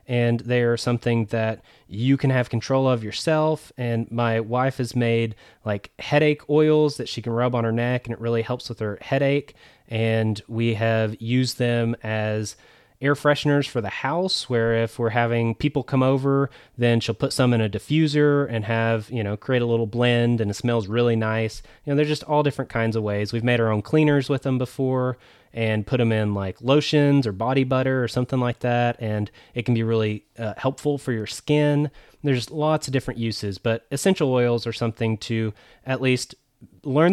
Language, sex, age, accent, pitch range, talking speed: English, male, 30-49, American, 115-135 Hz, 200 wpm